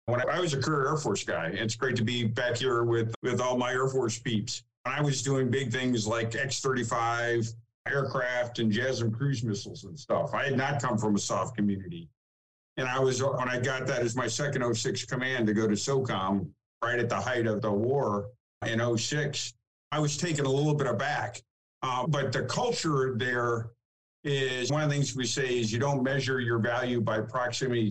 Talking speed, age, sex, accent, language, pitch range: 205 wpm, 50-69, male, American, English, 110-135 Hz